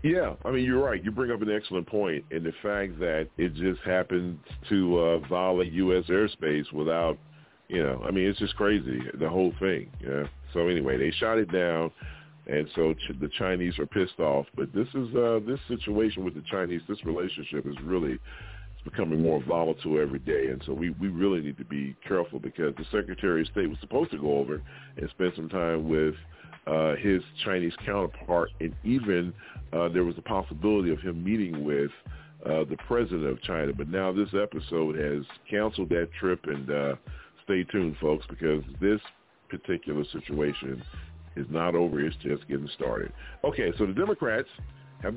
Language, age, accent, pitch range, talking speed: English, 40-59, American, 75-105 Hz, 185 wpm